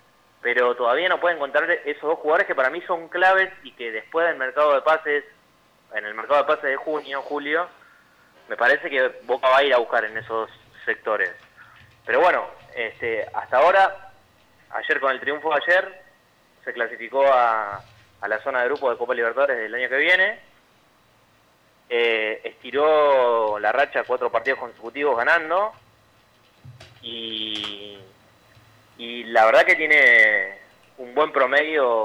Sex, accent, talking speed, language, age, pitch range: male, Argentinian, 155 wpm, English, 20-39, 115-160 Hz